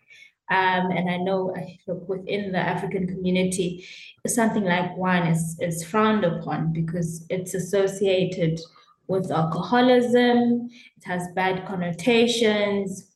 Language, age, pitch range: English, 20-39, 175-215 Hz